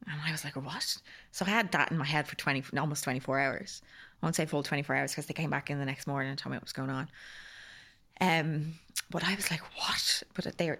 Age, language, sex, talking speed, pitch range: 20-39, English, female, 255 wpm, 145-165 Hz